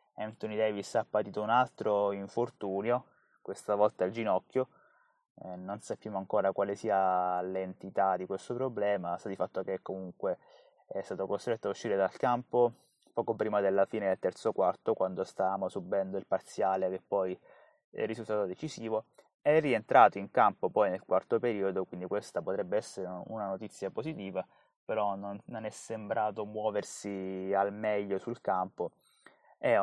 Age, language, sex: 20-39, Italian, male